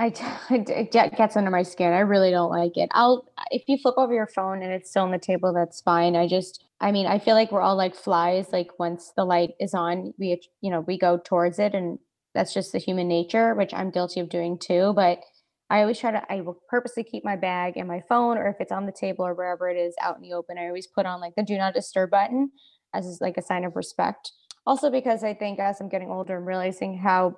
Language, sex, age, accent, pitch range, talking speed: English, female, 20-39, American, 180-210 Hz, 255 wpm